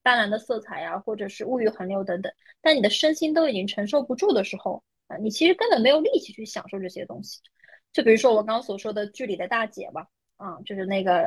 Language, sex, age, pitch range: Chinese, female, 20-39, 205-270 Hz